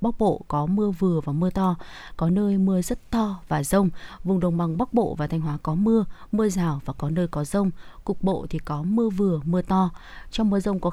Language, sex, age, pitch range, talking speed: Vietnamese, female, 20-39, 160-205 Hz, 240 wpm